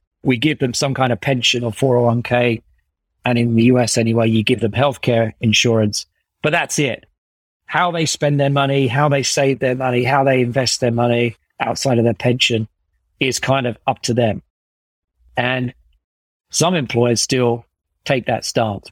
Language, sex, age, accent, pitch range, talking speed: English, male, 40-59, British, 110-135 Hz, 170 wpm